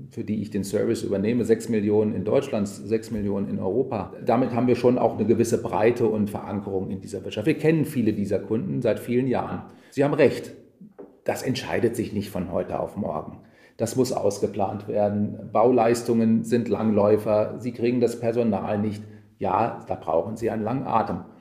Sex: male